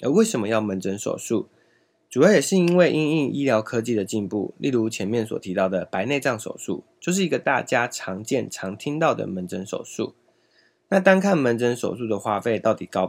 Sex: male